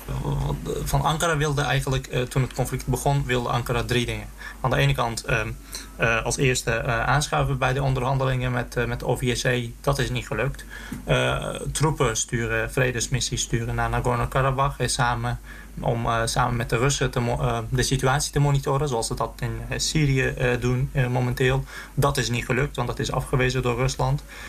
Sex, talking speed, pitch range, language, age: male, 150 wpm, 120-135 Hz, Dutch, 20-39